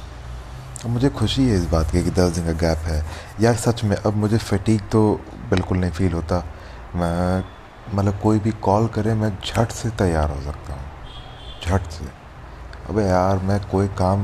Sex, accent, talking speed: male, native, 185 wpm